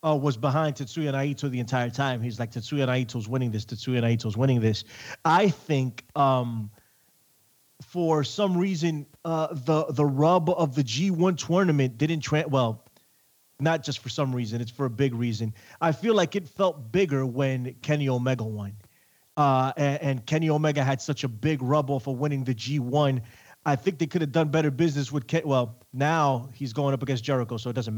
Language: English